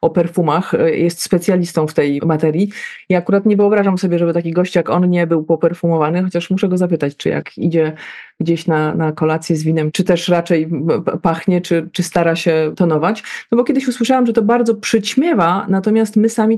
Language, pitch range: Polish, 170-205 Hz